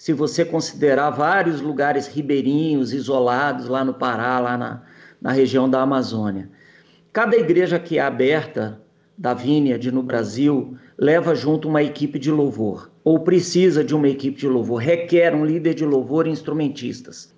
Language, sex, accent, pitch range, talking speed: Portuguese, male, Brazilian, 135-165 Hz, 160 wpm